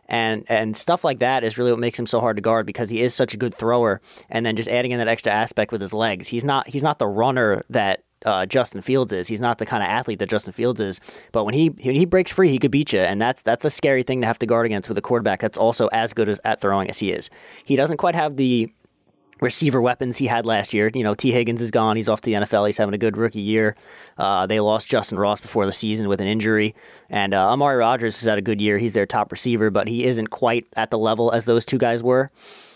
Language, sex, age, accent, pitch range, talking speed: English, male, 20-39, American, 110-130 Hz, 280 wpm